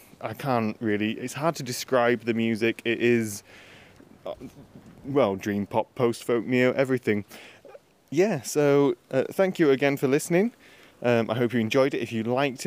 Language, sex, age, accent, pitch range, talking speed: English, male, 20-39, British, 115-135 Hz, 160 wpm